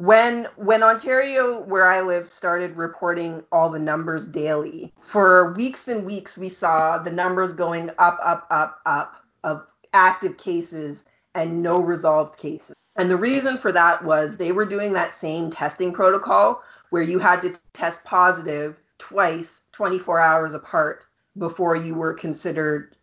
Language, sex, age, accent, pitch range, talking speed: English, female, 30-49, American, 160-185 Hz, 155 wpm